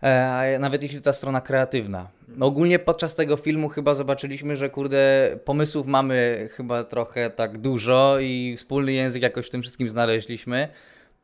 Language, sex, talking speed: Polish, male, 150 wpm